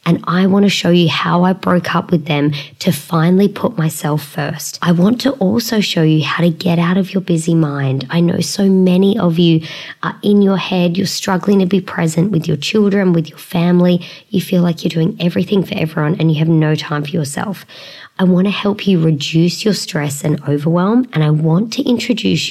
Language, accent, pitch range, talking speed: English, Australian, 155-190 Hz, 220 wpm